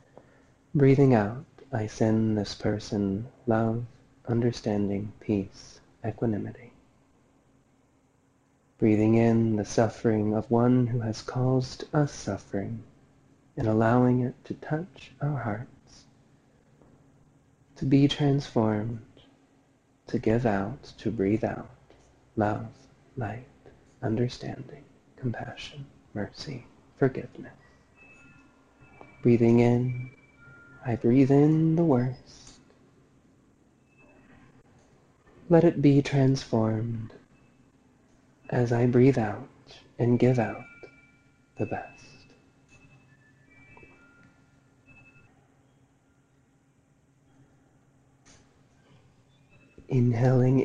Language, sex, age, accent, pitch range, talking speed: English, male, 30-49, American, 115-135 Hz, 75 wpm